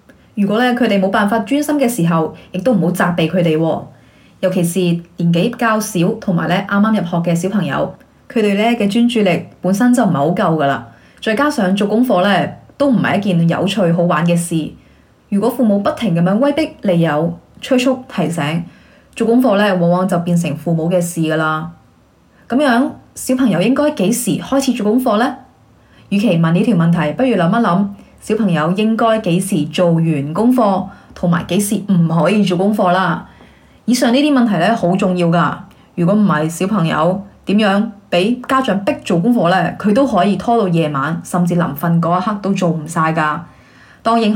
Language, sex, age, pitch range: Chinese, female, 20-39, 170-220 Hz